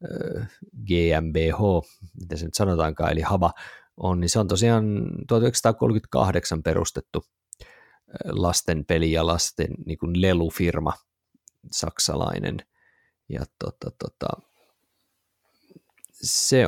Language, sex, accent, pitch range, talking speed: Finnish, male, native, 85-110 Hz, 95 wpm